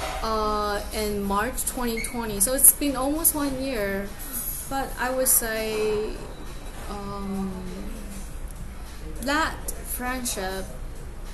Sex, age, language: female, 10-29, Chinese